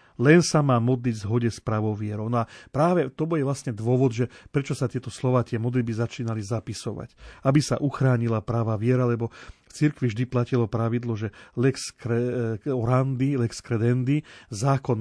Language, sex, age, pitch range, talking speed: Slovak, male, 40-59, 115-140 Hz, 160 wpm